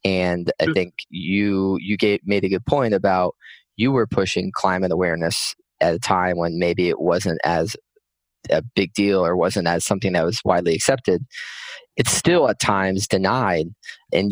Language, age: English, 20-39